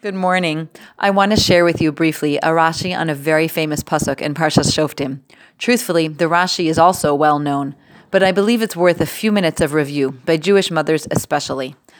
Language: English